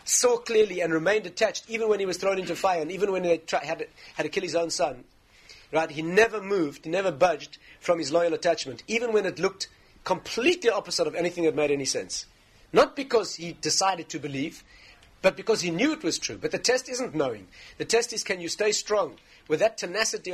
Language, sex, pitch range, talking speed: English, male, 150-195 Hz, 220 wpm